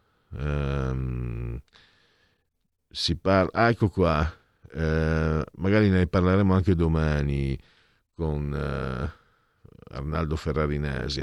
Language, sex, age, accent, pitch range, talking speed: Italian, male, 50-69, native, 85-125 Hz, 85 wpm